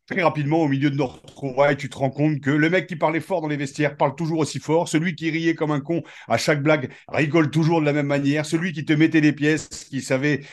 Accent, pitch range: French, 130-155 Hz